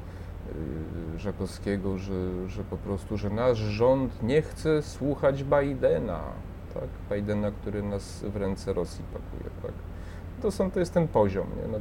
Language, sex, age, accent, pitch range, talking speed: Polish, male, 30-49, native, 90-105 Hz, 145 wpm